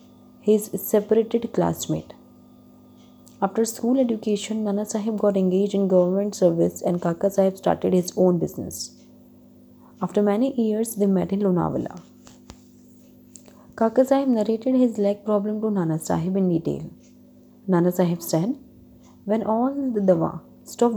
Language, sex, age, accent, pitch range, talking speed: Hindi, female, 20-39, native, 180-225 Hz, 130 wpm